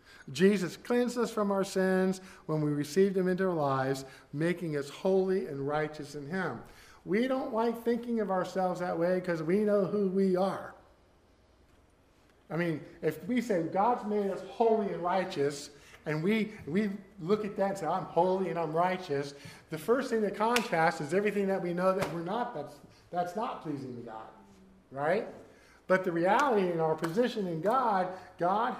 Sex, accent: male, American